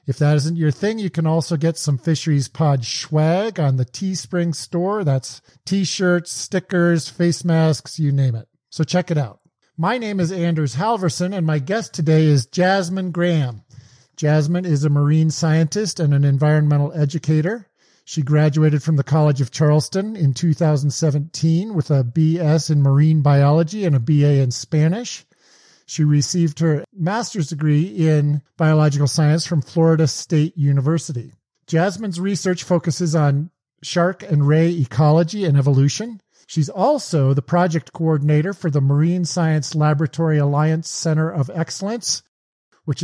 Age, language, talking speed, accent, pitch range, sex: 50-69, English, 150 wpm, American, 145-175 Hz, male